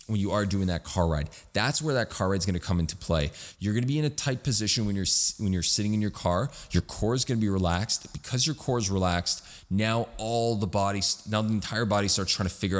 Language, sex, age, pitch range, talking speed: English, male, 20-39, 90-110 Hz, 270 wpm